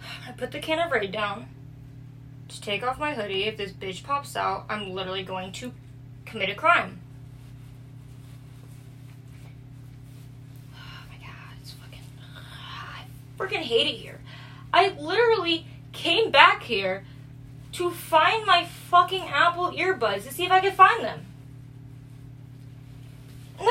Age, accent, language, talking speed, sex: 20-39, American, English, 135 wpm, female